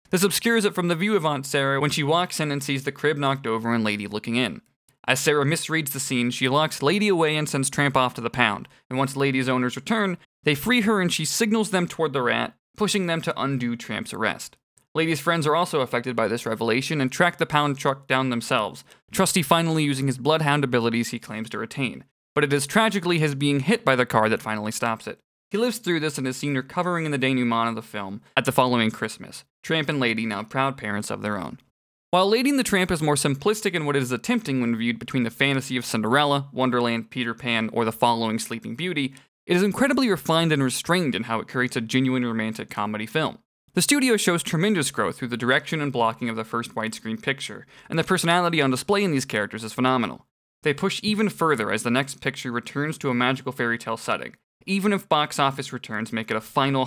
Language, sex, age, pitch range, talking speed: English, male, 20-39, 120-165 Hz, 230 wpm